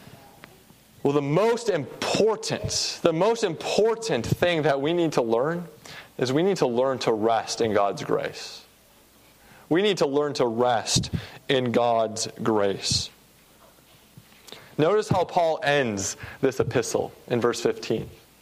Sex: male